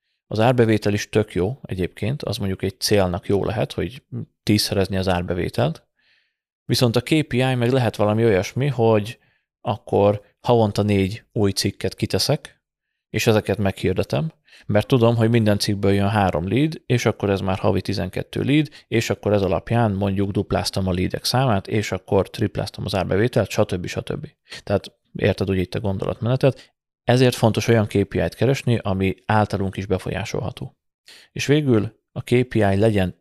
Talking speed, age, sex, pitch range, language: 155 wpm, 30-49, male, 95-115 Hz, Hungarian